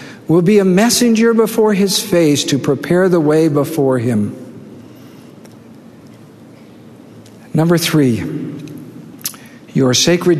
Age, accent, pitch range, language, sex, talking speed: 60-79, American, 140-190 Hz, English, male, 100 wpm